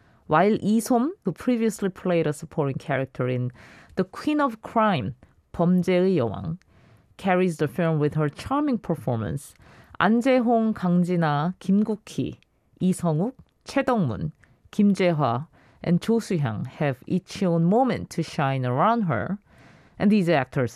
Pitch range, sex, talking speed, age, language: 135-205 Hz, female, 145 wpm, 40-59, English